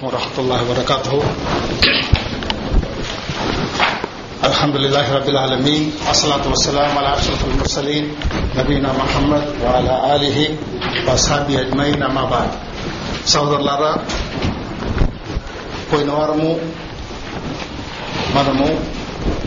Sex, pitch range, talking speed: male, 130-155 Hz, 70 wpm